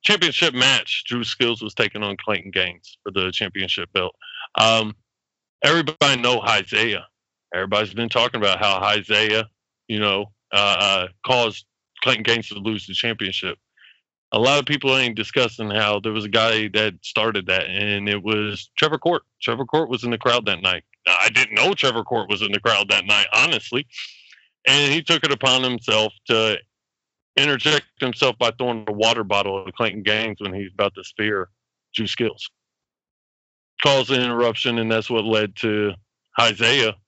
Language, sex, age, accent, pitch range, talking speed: English, male, 20-39, American, 105-130 Hz, 170 wpm